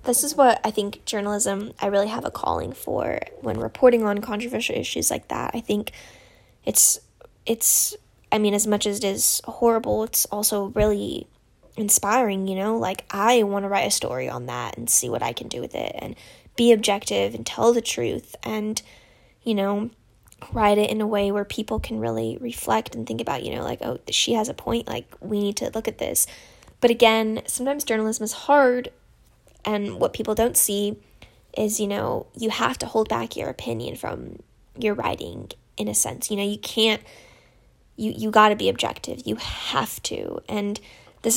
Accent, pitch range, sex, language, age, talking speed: American, 205-230 Hz, female, English, 10-29, 195 wpm